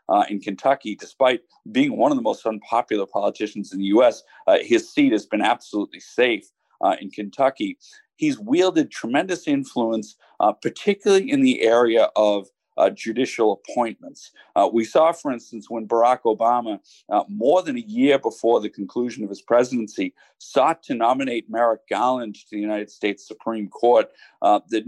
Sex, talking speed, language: male, 165 wpm, English